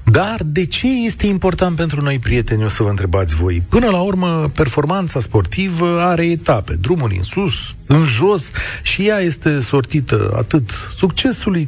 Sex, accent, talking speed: male, native, 160 wpm